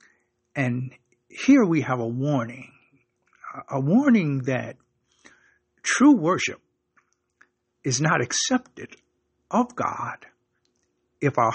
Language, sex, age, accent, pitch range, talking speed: English, male, 60-79, American, 120-170 Hz, 95 wpm